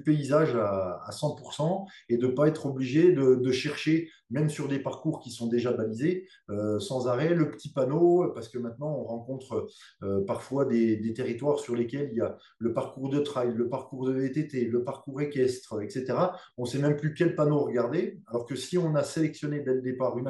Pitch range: 125-155 Hz